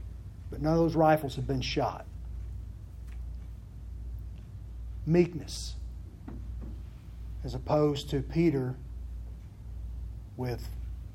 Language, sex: English, male